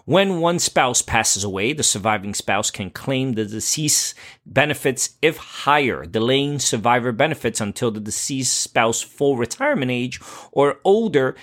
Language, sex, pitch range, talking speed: English, male, 110-135 Hz, 140 wpm